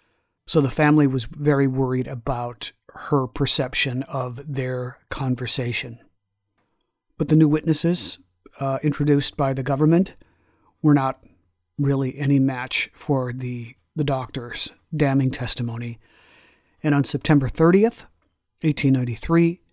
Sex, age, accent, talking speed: male, 50-69, American, 115 wpm